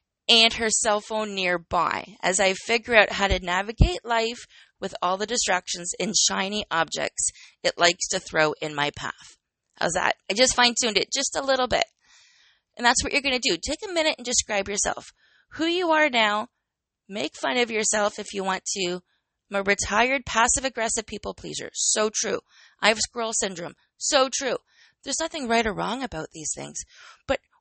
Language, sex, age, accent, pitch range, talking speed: English, female, 20-39, American, 185-245 Hz, 185 wpm